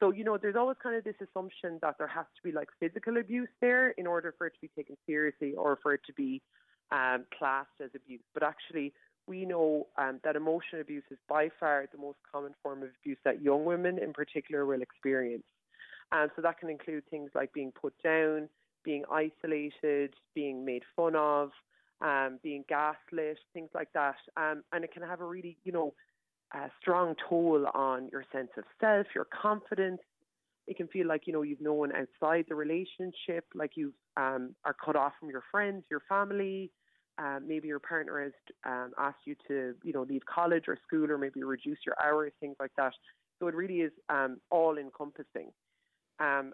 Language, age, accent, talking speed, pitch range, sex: English, 20-39, Irish, 195 wpm, 140-170 Hz, female